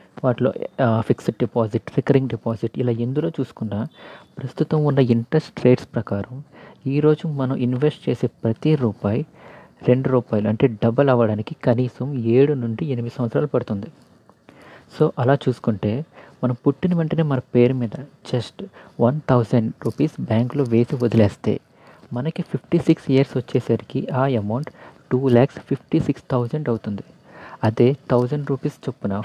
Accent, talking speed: native, 120 wpm